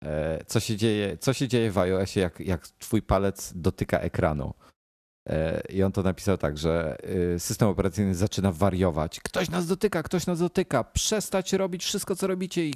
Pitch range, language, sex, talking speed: 80-105 Hz, Polish, male, 170 wpm